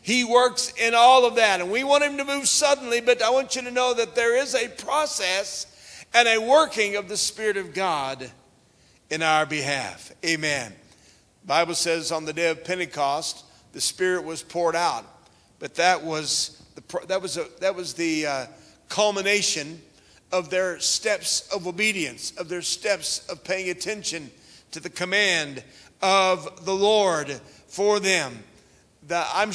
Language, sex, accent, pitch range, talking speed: English, male, American, 165-205 Hz, 165 wpm